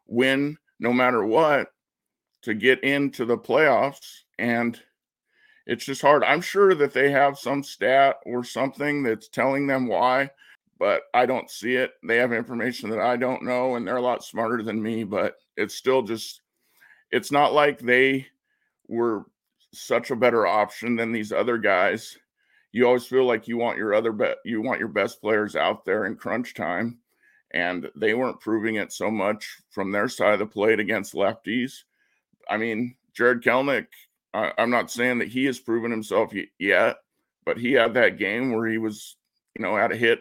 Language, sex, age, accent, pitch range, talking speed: English, male, 50-69, American, 115-140 Hz, 180 wpm